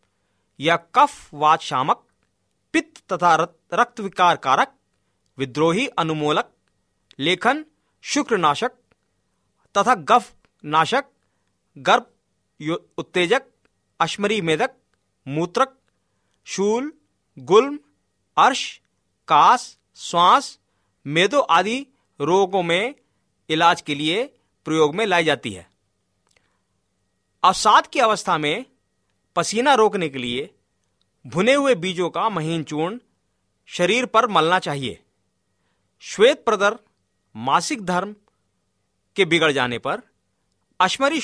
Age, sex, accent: 40-59, male, native